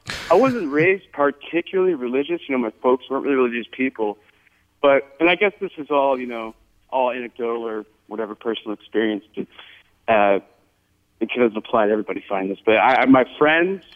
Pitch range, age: 120-150 Hz, 40-59